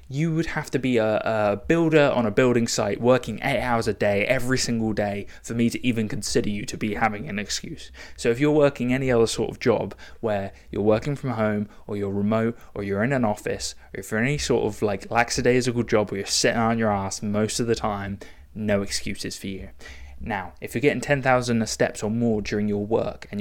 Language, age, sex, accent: English, 20-39, male, British